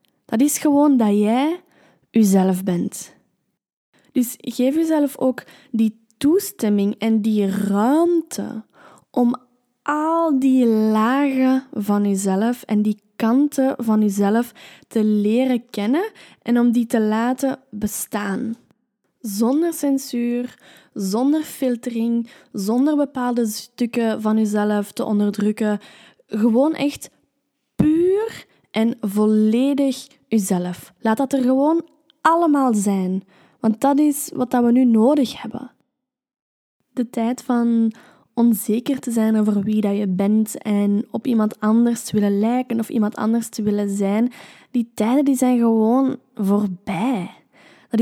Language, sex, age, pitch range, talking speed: Dutch, female, 10-29, 215-260 Hz, 120 wpm